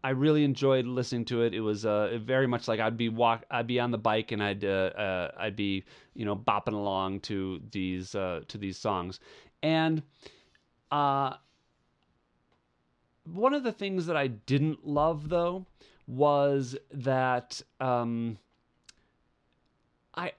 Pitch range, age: 105-150 Hz, 40-59